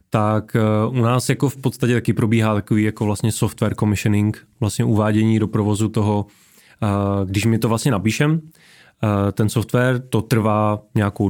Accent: native